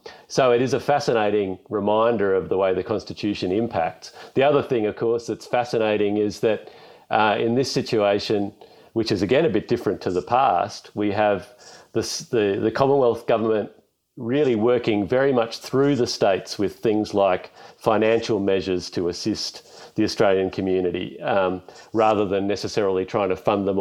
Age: 40-59